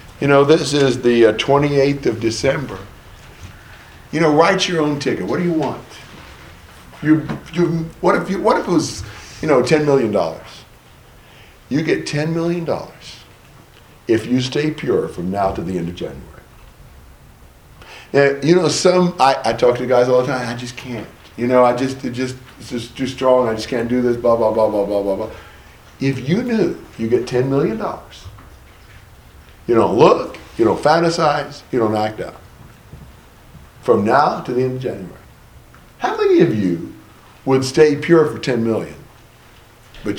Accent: American